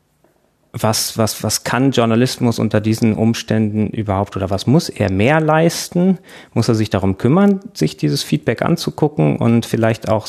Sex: male